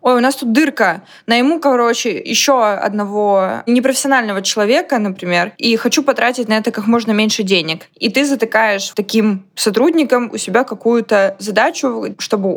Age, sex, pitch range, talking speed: 20-39, female, 195-235 Hz, 155 wpm